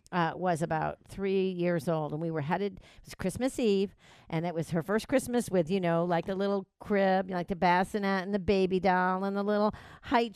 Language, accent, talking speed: English, American, 220 wpm